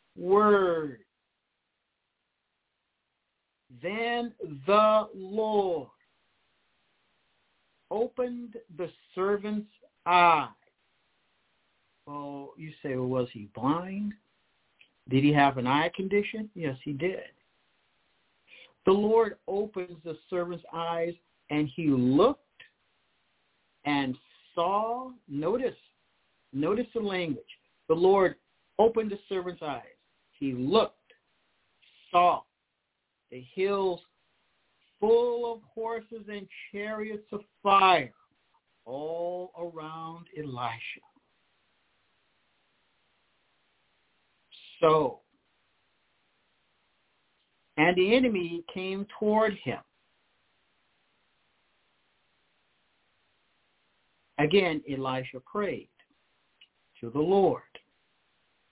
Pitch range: 155-210 Hz